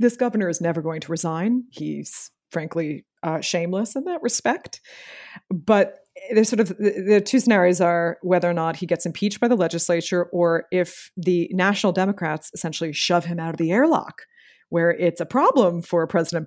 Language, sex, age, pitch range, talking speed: English, female, 30-49, 165-210 Hz, 180 wpm